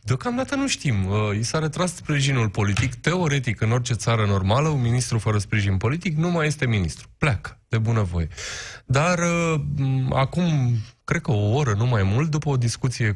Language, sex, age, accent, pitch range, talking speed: Romanian, male, 20-39, native, 110-145 Hz, 180 wpm